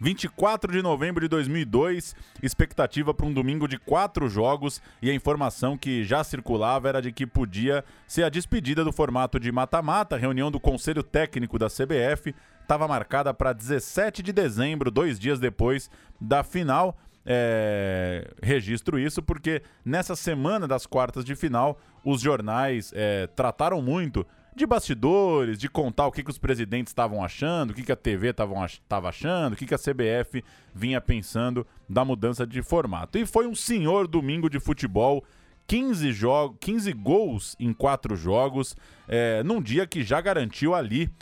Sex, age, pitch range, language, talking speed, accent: male, 20-39, 120-150 Hz, Portuguese, 160 wpm, Brazilian